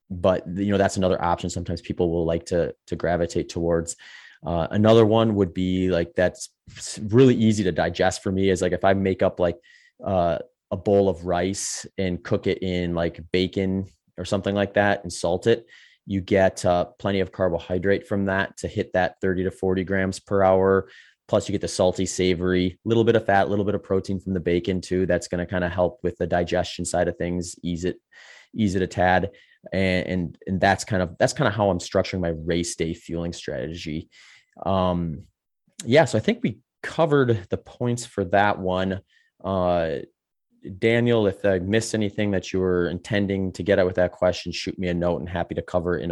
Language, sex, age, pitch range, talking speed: English, male, 30-49, 90-100 Hz, 210 wpm